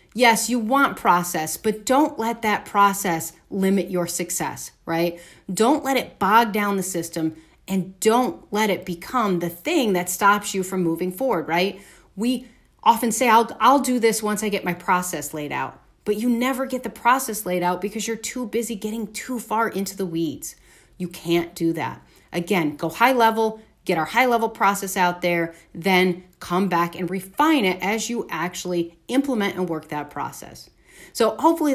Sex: female